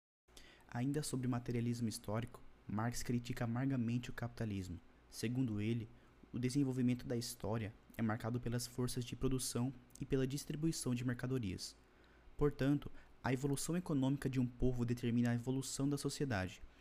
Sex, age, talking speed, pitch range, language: male, 20-39, 140 wpm, 115-130 Hz, Portuguese